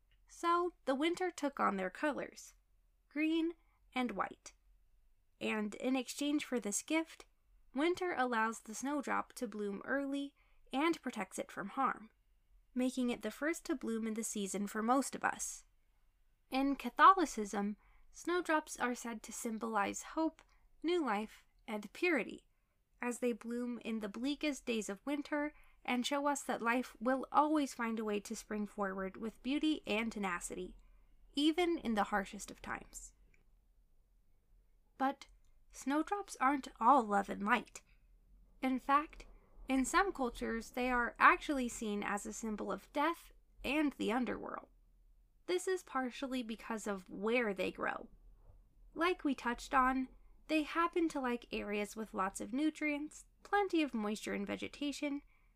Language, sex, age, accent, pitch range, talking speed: English, female, 20-39, American, 220-300 Hz, 145 wpm